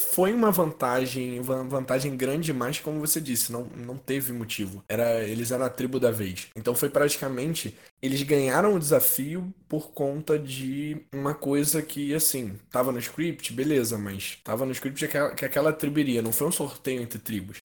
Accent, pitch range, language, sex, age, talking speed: Brazilian, 110-145 Hz, Portuguese, male, 10-29, 175 wpm